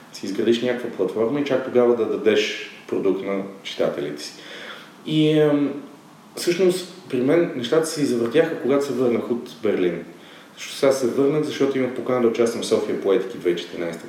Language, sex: Bulgarian, male